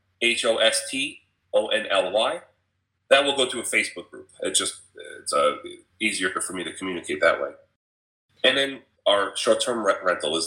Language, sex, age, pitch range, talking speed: English, male, 30-49, 95-135 Hz, 145 wpm